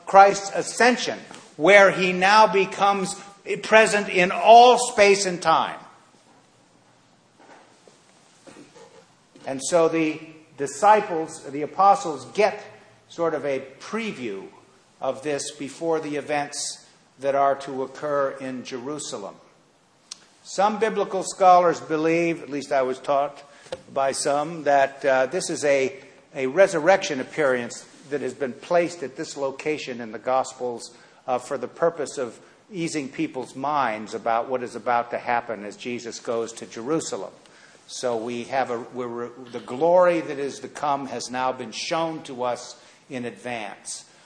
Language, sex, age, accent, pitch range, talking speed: English, male, 50-69, American, 130-175 Hz, 135 wpm